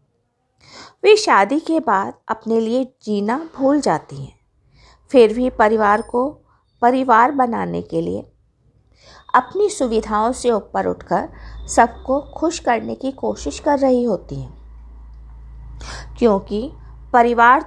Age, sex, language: 50-69, female, Hindi